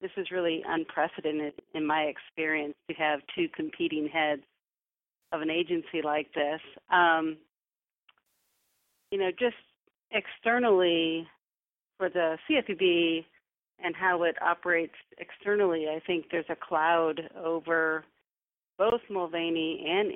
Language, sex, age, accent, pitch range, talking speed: English, female, 40-59, American, 155-175 Hz, 115 wpm